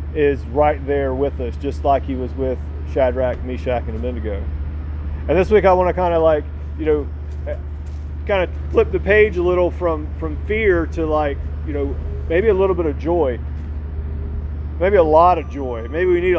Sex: male